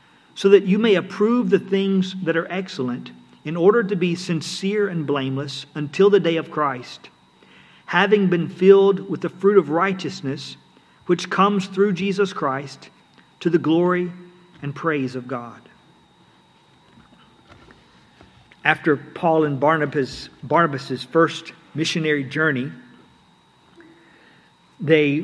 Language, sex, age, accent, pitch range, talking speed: English, male, 50-69, American, 140-180 Hz, 120 wpm